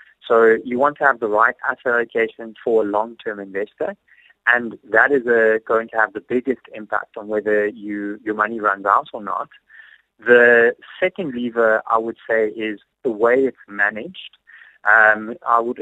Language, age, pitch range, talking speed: English, 30-49, 110-125 Hz, 175 wpm